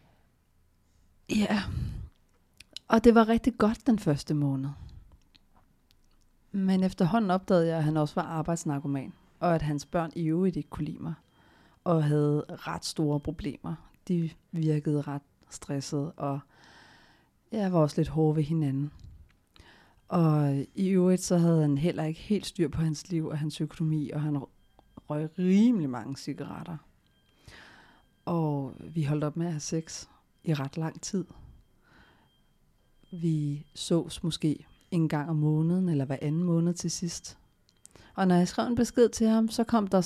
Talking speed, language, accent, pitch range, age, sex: 155 wpm, Danish, native, 150-190 Hz, 40-59, female